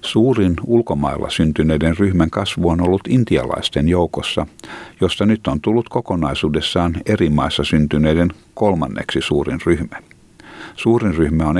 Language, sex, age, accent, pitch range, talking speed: Finnish, male, 60-79, native, 75-95 Hz, 120 wpm